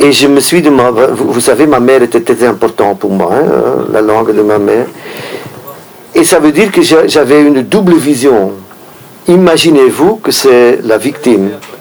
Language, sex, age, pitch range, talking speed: French, male, 50-69, 115-180 Hz, 175 wpm